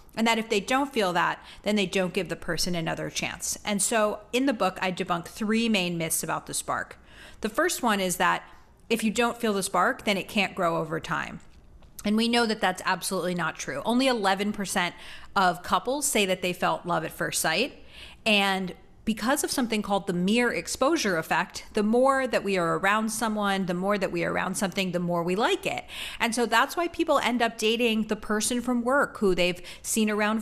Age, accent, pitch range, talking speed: 40-59, American, 180-230 Hz, 215 wpm